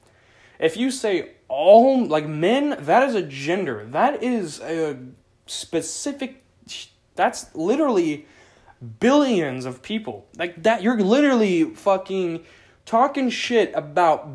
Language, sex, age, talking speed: English, male, 20-39, 115 wpm